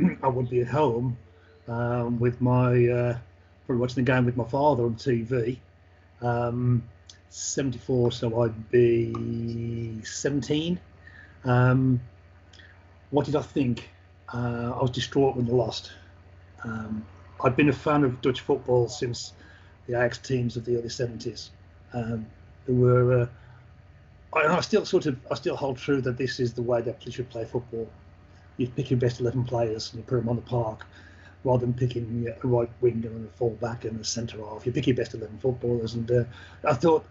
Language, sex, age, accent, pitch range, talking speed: English, male, 40-59, British, 105-130 Hz, 180 wpm